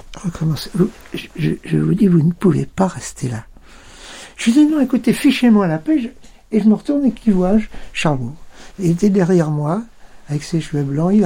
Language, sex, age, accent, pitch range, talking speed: French, male, 60-79, French, 155-200 Hz, 185 wpm